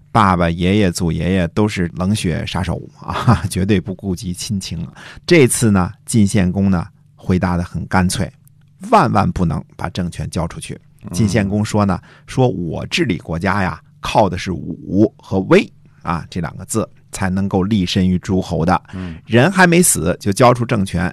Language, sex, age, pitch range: Chinese, male, 50-69, 90-115 Hz